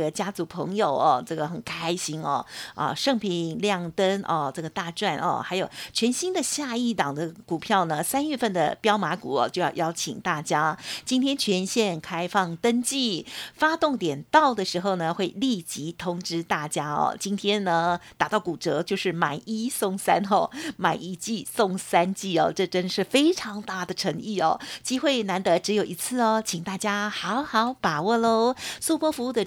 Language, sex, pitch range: Chinese, female, 180-245 Hz